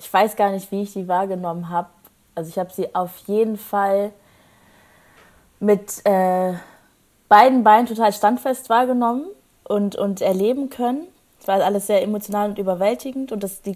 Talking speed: 155 wpm